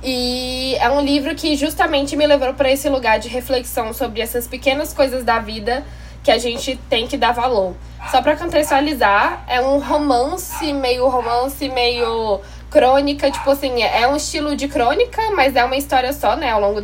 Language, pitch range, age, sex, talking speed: Portuguese, 220-275 Hz, 10-29, female, 180 wpm